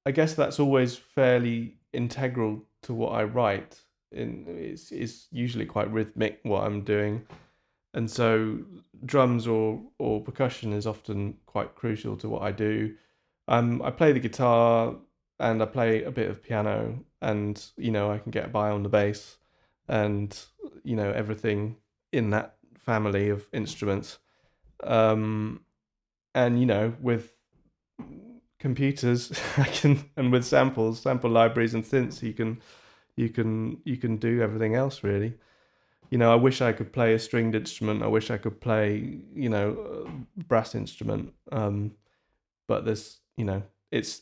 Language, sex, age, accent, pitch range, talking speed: English, male, 20-39, British, 105-120 Hz, 155 wpm